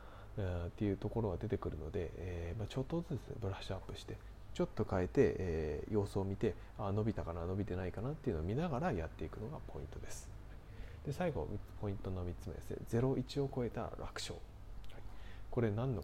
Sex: male